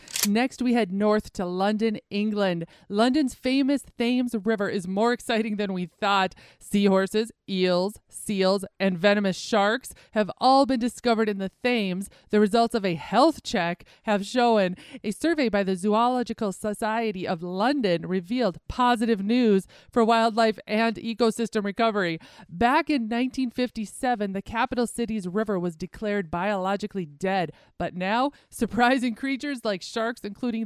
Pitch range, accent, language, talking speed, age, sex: 195-240 Hz, American, English, 140 wpm, 30-49, female